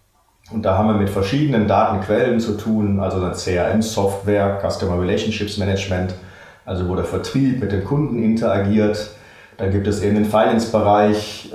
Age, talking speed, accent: 30-49, 150 wpm, German